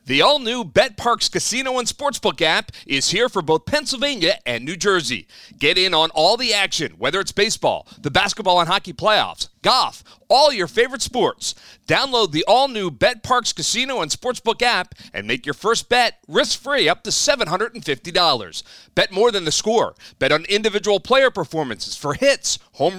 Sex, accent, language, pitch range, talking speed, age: male, American, English, 185-265 Hz, 170 wpm, 40-59